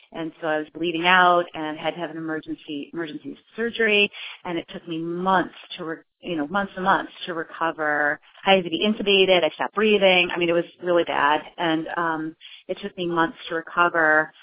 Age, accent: 30-49, American